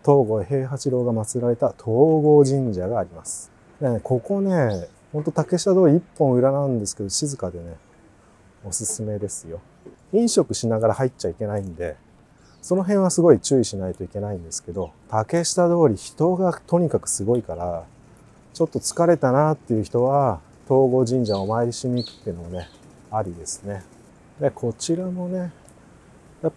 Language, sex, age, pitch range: Japanese, male, 30-49, 100-140 Hz